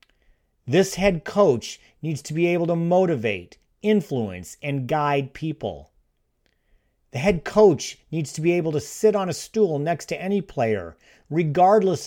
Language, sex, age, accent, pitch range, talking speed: English, male, 40-59, American, 125-175 Hz, 150 wpm